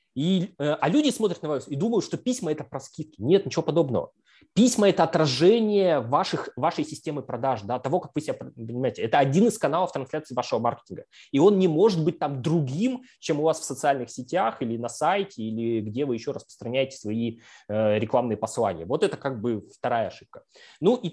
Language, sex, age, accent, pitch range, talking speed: Russian, male, 20-39, native, 120-175 Hz, 185 wpm